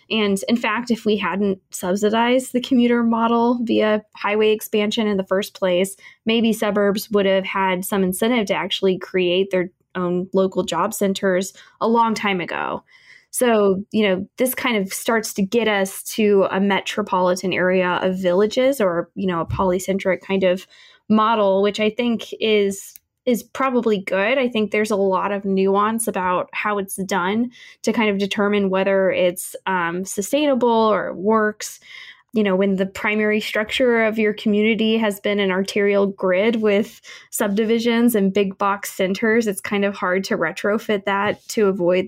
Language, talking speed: English, 170 wpm